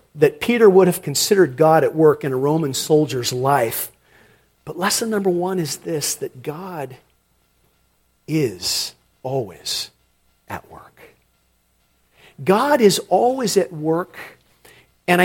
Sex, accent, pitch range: male, American, 145-225 Hz